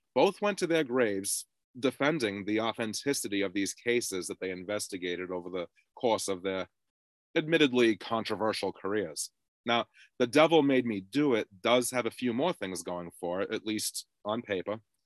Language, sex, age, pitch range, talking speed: English, male, 30-49, 100-125 Hz, 165 wpm